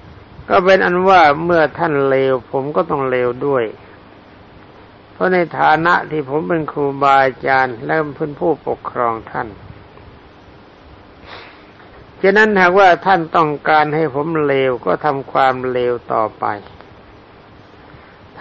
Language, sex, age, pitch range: Thai, male, 60-79, 105-155 Hz